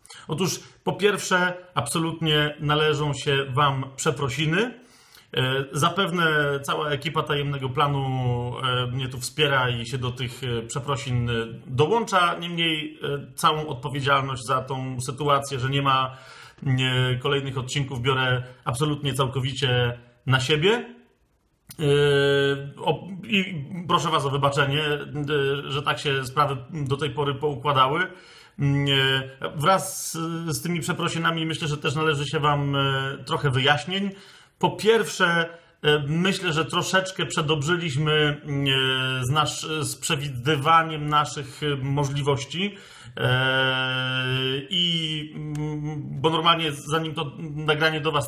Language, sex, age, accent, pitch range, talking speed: Polish, male, 40-59, native, 135-160 Hz, 100 wpm